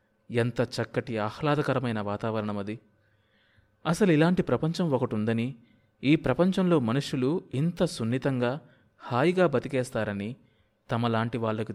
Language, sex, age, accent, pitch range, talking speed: Telugu, male, 30-49, native, 110-145 Hz, 90 wpm